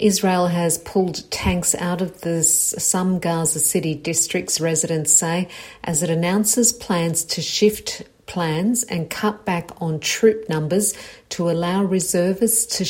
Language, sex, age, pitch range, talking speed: English, female, 50-69, 165-195 Hz, 135 wpm